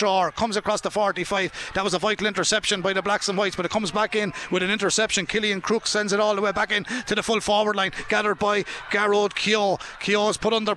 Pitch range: 195-210 Hz